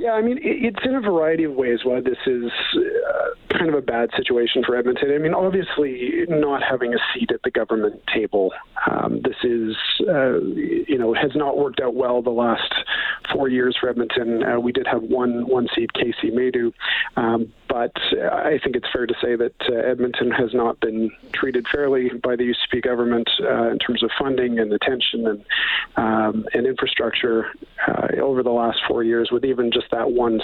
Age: 40-59